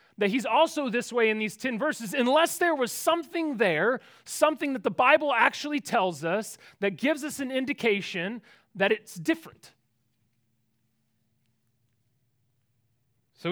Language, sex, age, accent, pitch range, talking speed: English, male, 30-49, American, 155-245 Hz, 135 wpm